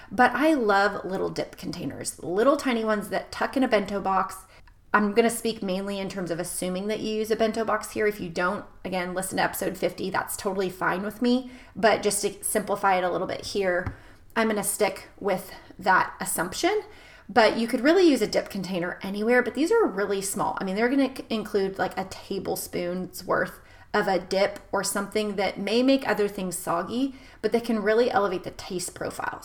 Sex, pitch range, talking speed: female, 190-235 Hz, 210 wpm